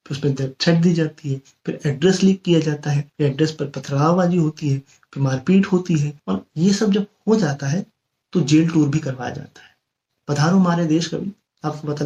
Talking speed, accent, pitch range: 215 wpm, native, 145-170 Hz